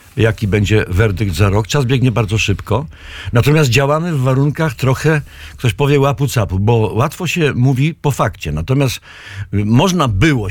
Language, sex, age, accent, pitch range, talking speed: Polish, male, 50-69, native, 125-170 Hz, 150 wpm